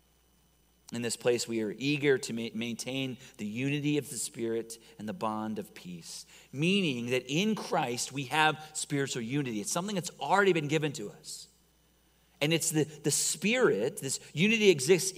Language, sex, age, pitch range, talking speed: English, male, 40-59, 125-175 Hz, 165 wpm